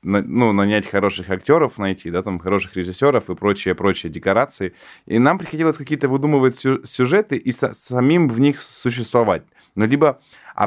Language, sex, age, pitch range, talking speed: Russian, male, 20-39, 100-125 Hz, 155 wpm